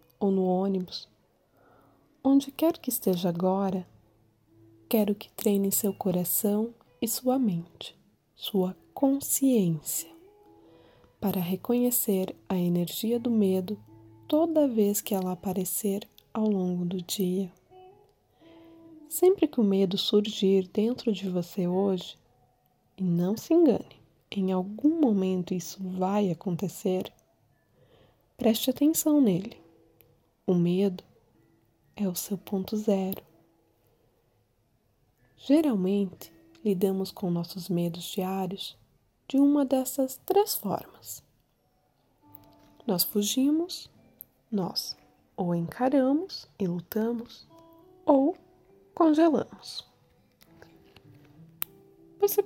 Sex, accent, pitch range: female, Brazilian, 180-250 Hz